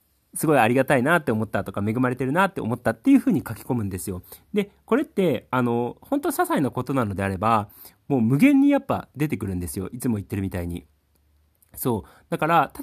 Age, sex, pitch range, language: 30-49, male, 105-170 Hz, Japanese